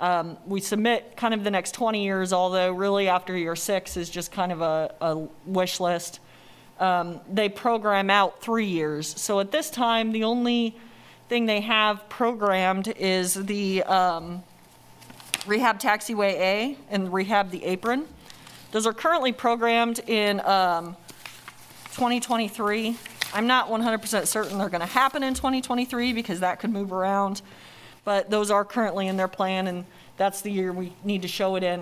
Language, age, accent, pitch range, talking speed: English, 30-49, American, 185-220 Hz, 160 wpm